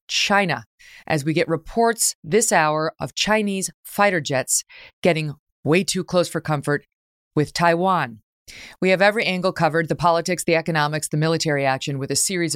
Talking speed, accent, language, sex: 165 wpm, American, English, female